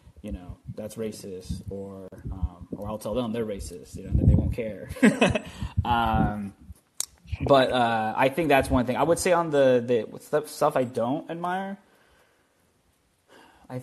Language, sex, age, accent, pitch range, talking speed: English, male, 20-39, American, 105-130 Hz, 155 wpm